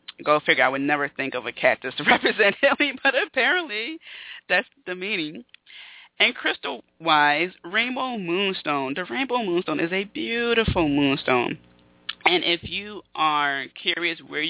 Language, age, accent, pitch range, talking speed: English, 20-39, American, 135-165 Hz, 145 wpm